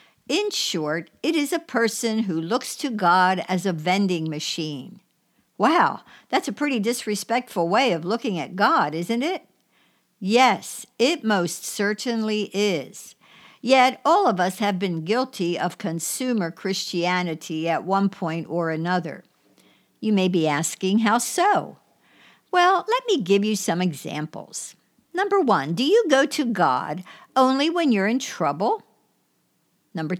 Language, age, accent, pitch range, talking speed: English, 60-79, American, 175-240 Hz, 145 wpm